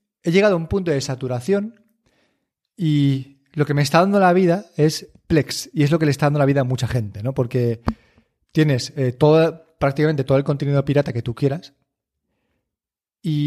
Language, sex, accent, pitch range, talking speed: Spanish, male, Spanish, 125-160 Hz, 190 wpm